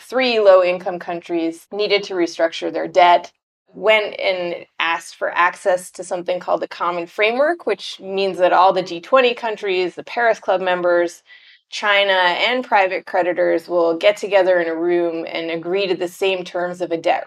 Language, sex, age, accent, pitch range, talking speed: English, female, 30-49, American, 170-200 Hz, 175 wpm